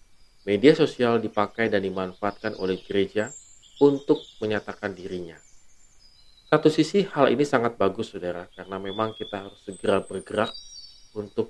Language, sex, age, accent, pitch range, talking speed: Indonesian, male, 40-59, native, 95-115 Hz, 125 wpm